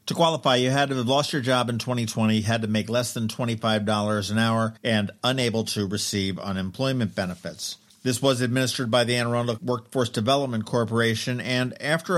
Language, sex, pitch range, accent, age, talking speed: English, male, 110-155 Hz, American, 50-69, 175 wpm